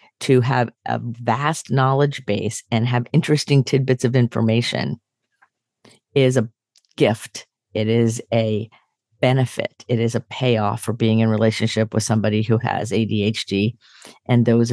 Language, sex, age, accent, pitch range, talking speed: English, female, 40-59, American, 110-125 Hz, 140 wpm